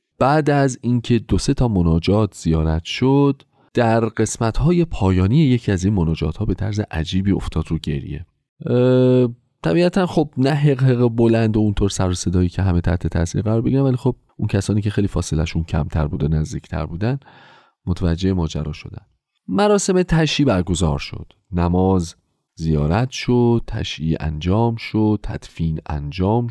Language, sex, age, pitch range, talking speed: Persian, male, 30-49, 85-120 Hz, 150 wpm